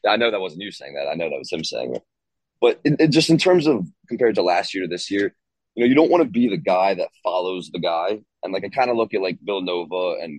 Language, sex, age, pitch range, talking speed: English, male, 20-39, 90-105 Hz, 300 wpm